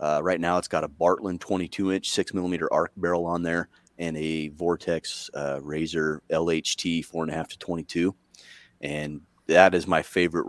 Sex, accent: male, American